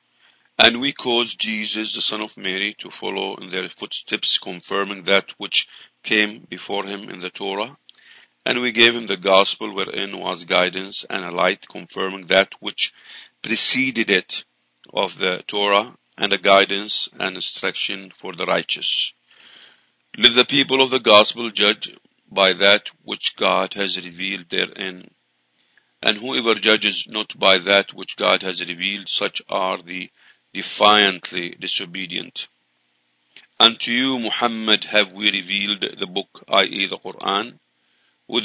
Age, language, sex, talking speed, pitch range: 50-69, English, male, 145 wpm, 95-110 Hz